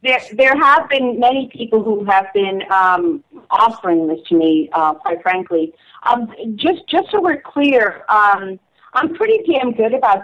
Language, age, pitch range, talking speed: English, 40-59, 190-235 Hz, 170 wpm